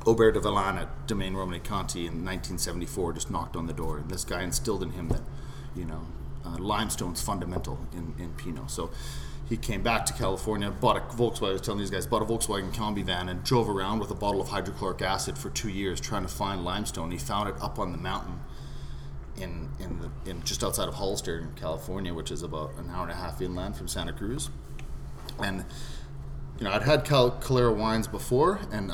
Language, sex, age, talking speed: English, male, 30-49, 210 wpm